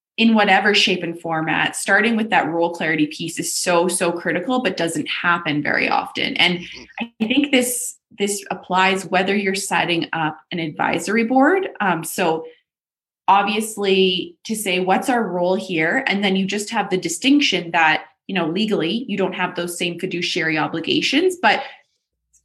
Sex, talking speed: female, 165 wpm